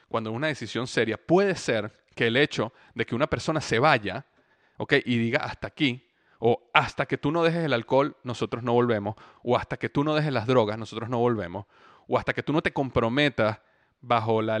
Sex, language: male, Spanish